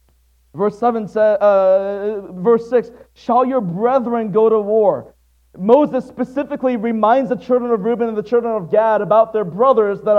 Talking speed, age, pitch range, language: 165 wpm, 40-59, 220-280 Hz, English